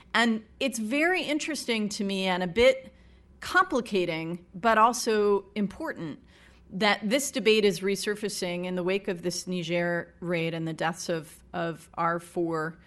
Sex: female